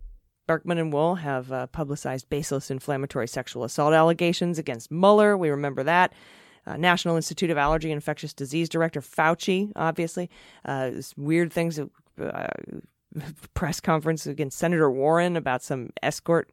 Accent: American